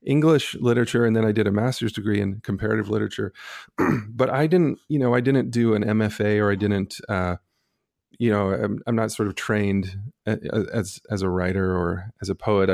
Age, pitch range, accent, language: 30-49, 95-120 Hz, American, English